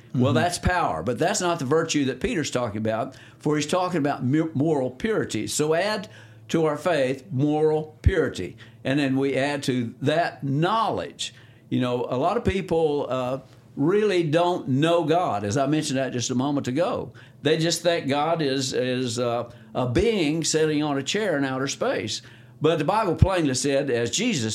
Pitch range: 125-160 Hz